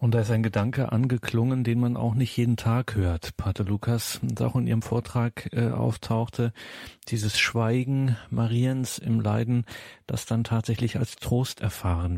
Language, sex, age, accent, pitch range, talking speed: German, male, 40-59, German, 110-120 Hz, 165 wpm